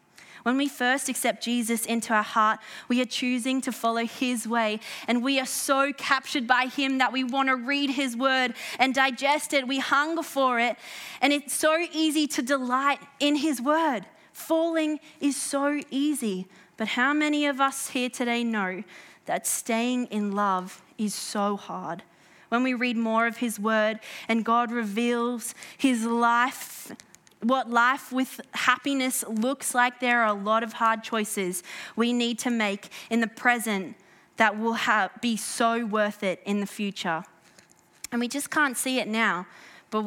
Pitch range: 225-265 Hz